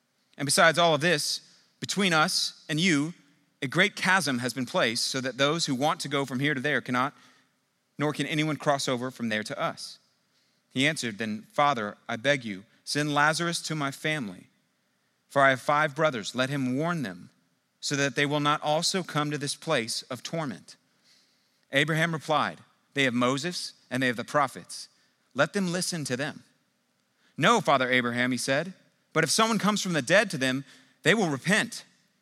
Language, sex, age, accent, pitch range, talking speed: English, male, 30-49, American, 130-170 Hz, 190 wpm